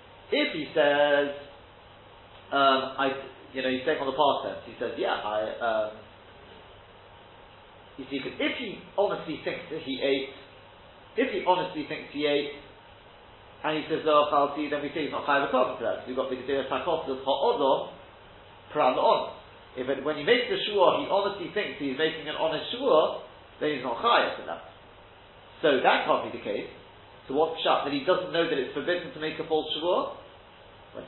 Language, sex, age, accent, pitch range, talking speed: English, male, 40-59, British, 130-175 Hz, 190 wpm